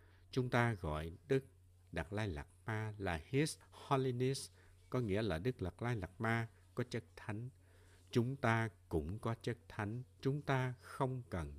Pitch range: 90-120 Hz